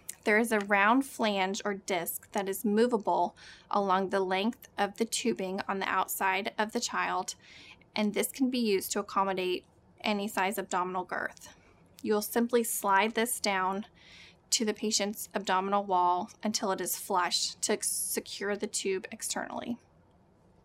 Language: English